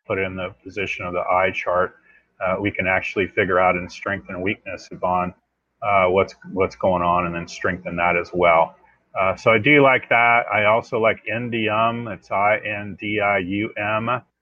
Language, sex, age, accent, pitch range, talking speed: English, male, 30-49, American, 95-110 Hz, 175 wpm